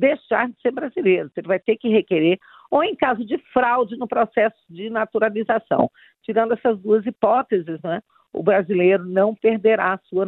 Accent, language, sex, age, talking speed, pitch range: Brazilian, Portuguese, female, 50-69, 170 wpm, 180-225 Hz